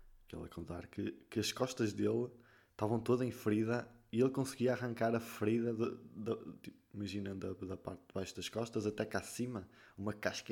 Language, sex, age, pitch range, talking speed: Portuguese, male, 20-39, 100-125 Hz, 210 wpm